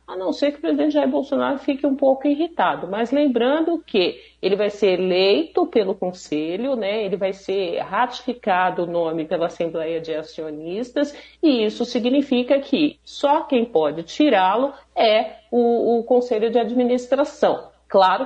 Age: 50-69